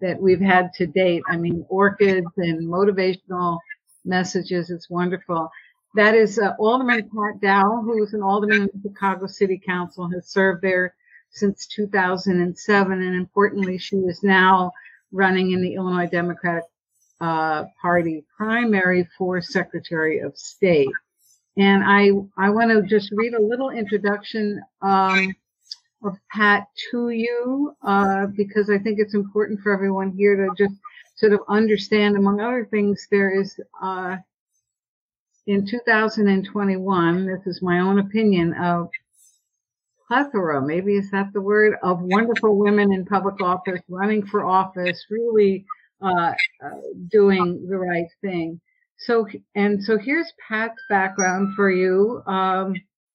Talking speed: 135 wpm